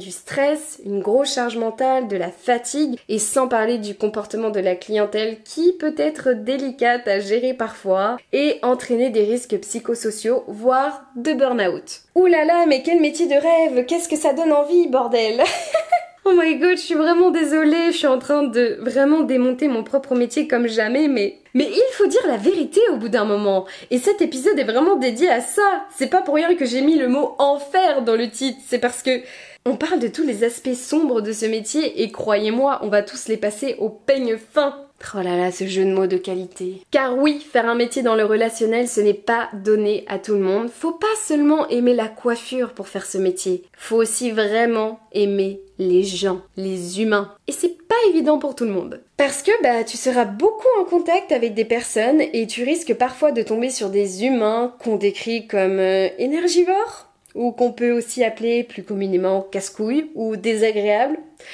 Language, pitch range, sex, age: French, 215-300 Hz, female, 20-39